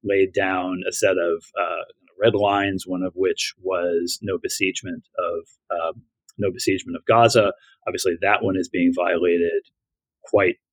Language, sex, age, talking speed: English, male, 30-49, 135 wpm